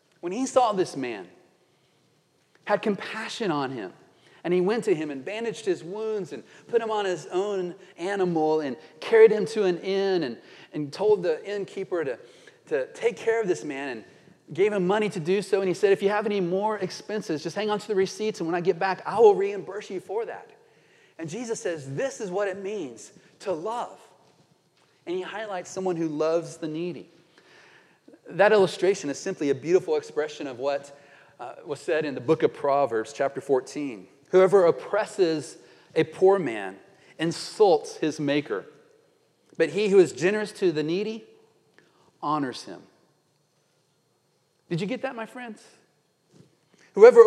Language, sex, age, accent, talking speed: English, male, 30-49, American, 175 wpm